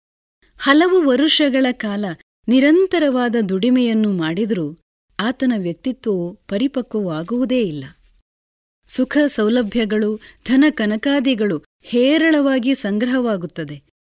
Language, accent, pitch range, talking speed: Kannada, native, 195-275 Hz, 65 wpm